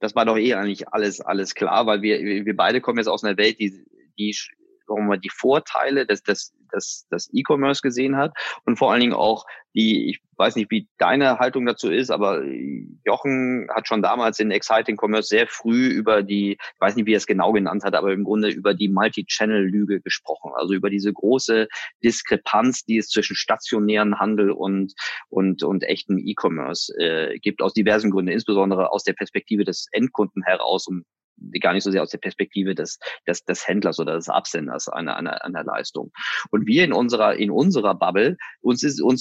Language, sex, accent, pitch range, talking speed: German, male, German, 100-115 Hz, 190 wpm